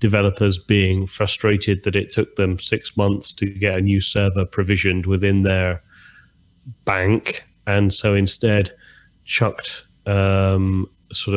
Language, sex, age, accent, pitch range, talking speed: English, male, 30-49, British, 95-110 Hz, 125 wpm